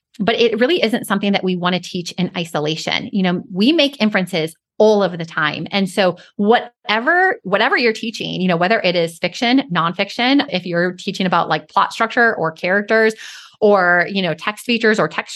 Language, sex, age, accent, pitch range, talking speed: English, female, 30-49, American, 175-225 Hz, 195 wpm